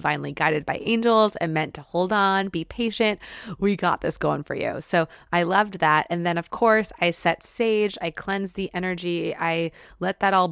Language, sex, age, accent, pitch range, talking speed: English, female, 20-39, American, 160-195 Hz, 205 wpm